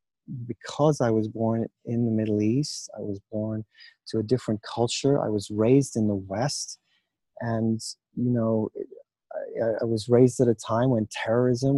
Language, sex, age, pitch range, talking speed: English, male, 30-49, 105-130 Hz, 170 wpm